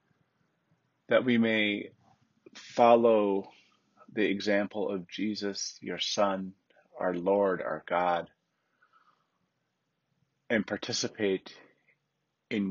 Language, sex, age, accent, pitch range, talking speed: English, male, 30-49, American, 90-110 Hz, 80 wpm